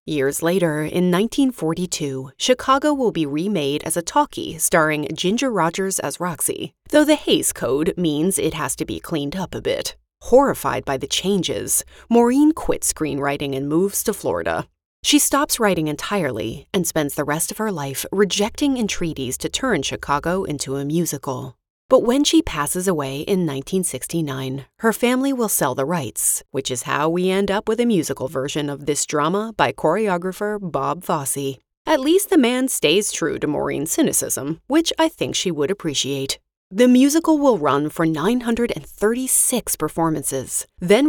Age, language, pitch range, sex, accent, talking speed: 30-49, English, 145-225 Hz, female, American, 165 wpm